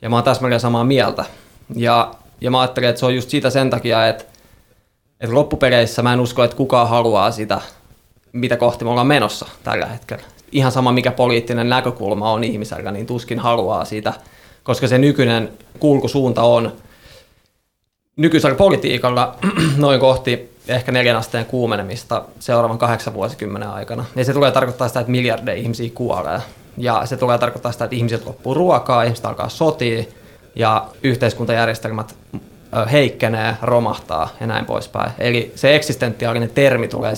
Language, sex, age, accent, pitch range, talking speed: Finnish, male, 20-39, native, 115-130 Hz, 155 wpm